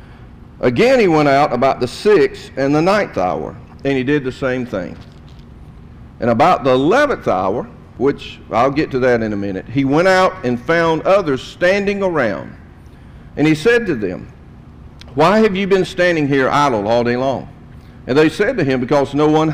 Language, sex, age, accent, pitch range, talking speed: English, male, 50-69, American, 120-170 Hz, 185 wpm